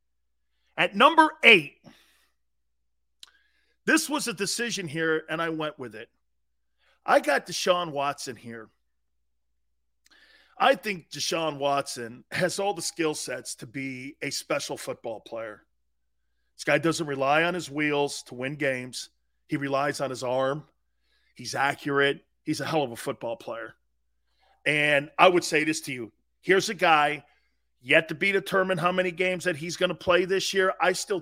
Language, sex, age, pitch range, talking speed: English, male, 40-59, 115-175 Hz, 160 wpm